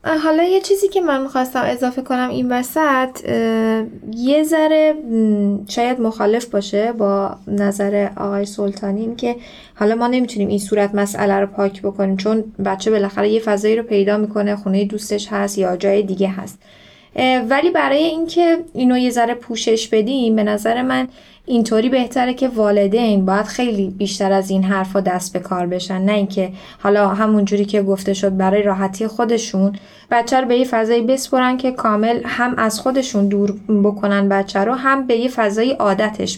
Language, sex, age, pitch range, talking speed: Persian, female, 10-29, 200-235 Hz, 170 wpm